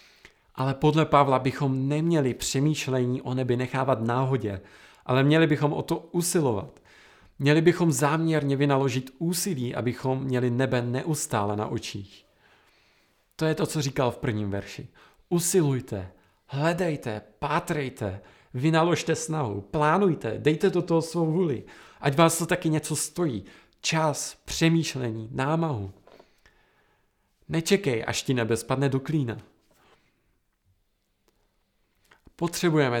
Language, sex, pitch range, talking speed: Czech, male, 120-155 Hz, 115 wpm